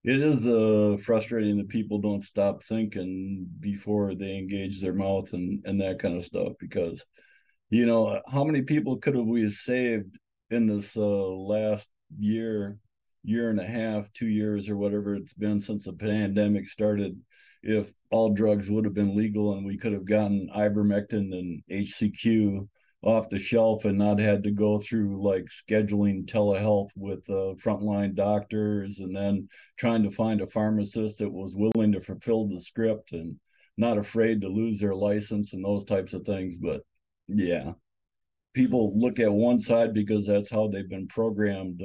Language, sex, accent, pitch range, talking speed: English, male, American, 100-110 Hz, 170 wpm